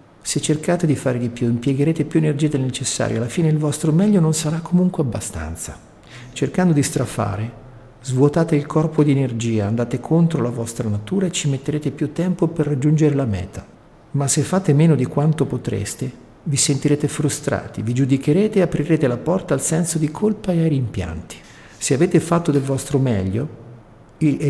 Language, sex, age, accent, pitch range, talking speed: Italian, male, 50-69, native, 115-155 Hz, 175 wpm